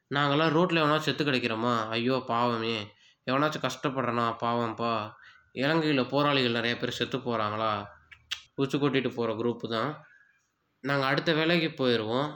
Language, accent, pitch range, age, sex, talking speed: Tamil, native, 125-175 Hz, 20-39, male, 115 wpm